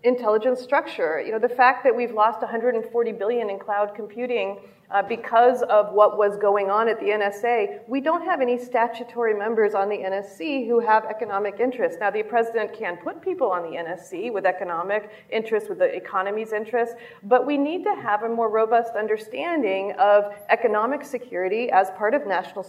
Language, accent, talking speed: English, American, 185 wpm